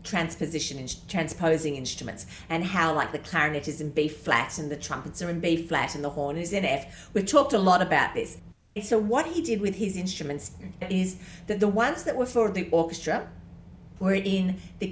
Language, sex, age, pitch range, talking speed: English, female, 40-59, 155-215 Hz, 195 wpm